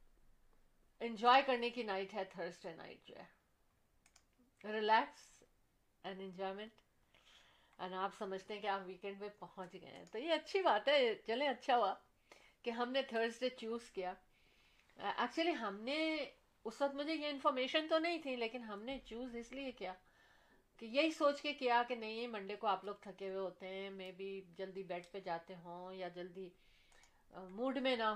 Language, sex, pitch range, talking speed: Urdu, female, 195-265 Hz, 145 wpm